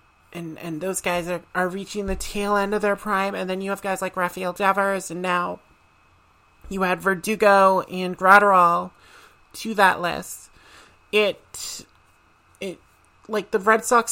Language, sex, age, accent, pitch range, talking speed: English, male, 30-49, American, 180-205 Hz, 155 wpm